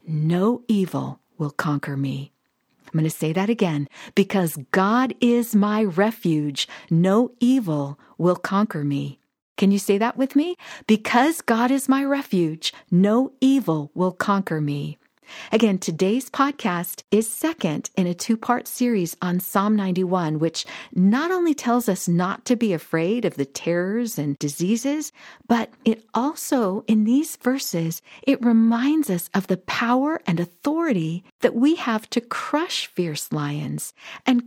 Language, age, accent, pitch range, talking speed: English, 50-69, American, 175-250 Hz, 150 wpm